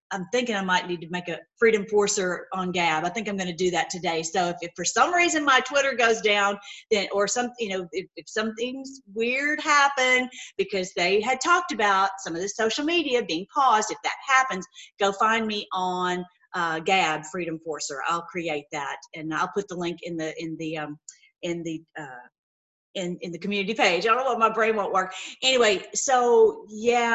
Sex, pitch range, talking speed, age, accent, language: female, 185-240 Hz, 210 wpm, 40-59, American, English